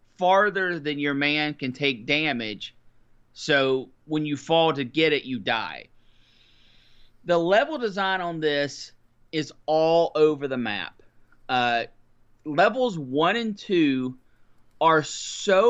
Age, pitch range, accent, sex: 30-49, 125-175 Hz, American, male